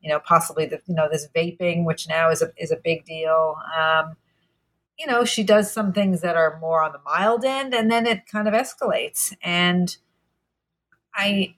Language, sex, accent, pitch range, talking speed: English, female, American, 160-190 Hz, 195 wpm